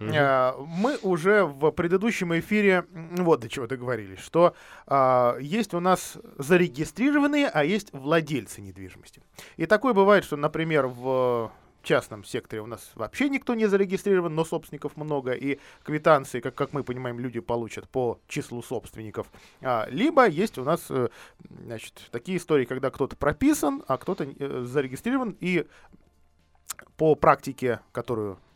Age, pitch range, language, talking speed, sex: 20-39, 130-195 Hz, Russian, 130 wpm, male